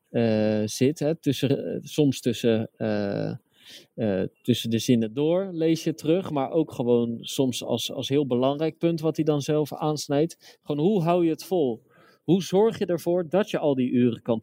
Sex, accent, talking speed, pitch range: male, Dutch, 175 wpm, 125-160 Hz